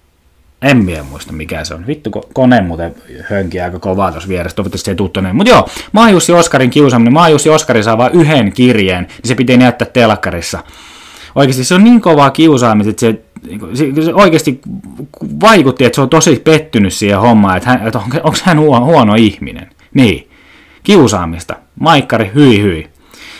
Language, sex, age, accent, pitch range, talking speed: Finnish, male, 20-39, native, 110-160 Hz, 170 wpm